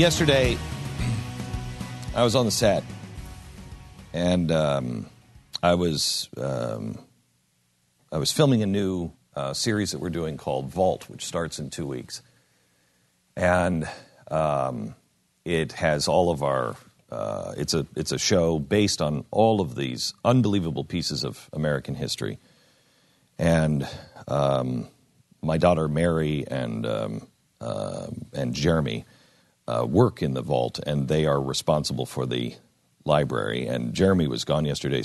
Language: English